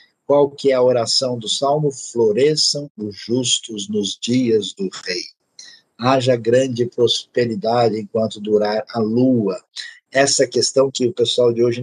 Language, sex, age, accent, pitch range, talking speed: Portuguese, male, 50-69, Brazilian, 120-145 Hz, 140 wpm